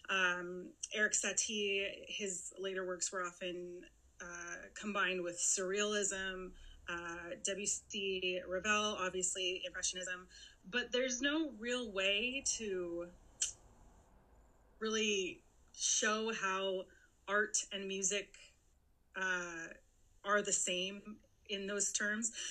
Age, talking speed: 30-49, 95 wpm